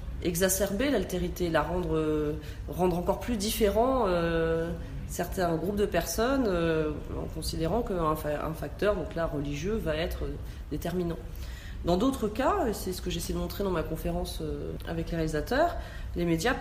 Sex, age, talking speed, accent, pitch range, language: female, 30-49, 160 wpm, French, 165-220 Hz, French